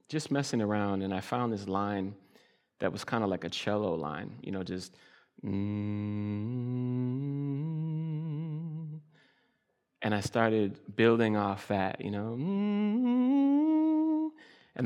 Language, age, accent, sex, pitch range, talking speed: English, 30-49, American, male, 100-130 Hz, 120 wpm